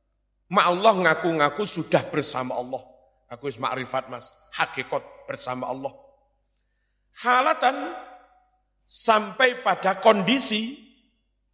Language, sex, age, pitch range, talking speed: Indonesian, male, 50-69, 120-195 Hz, 80 wpm